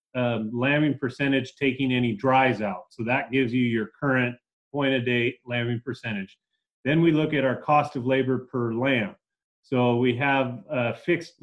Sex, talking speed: male, 165 wpm